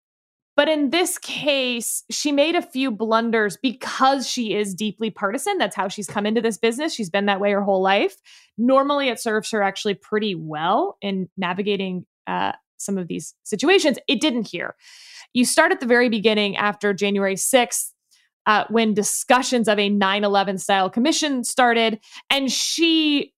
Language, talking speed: English, 170 wpm